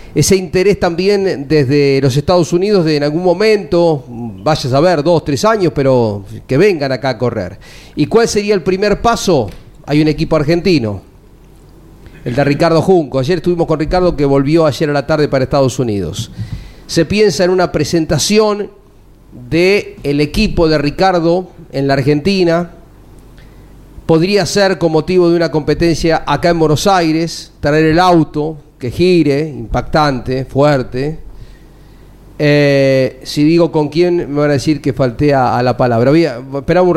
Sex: male